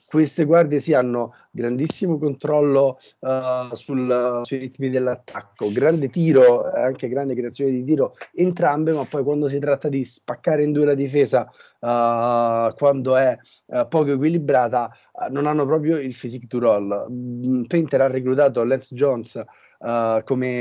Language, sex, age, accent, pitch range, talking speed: Italian, male, 30-49, native, 120-145 Hz, 150 wpm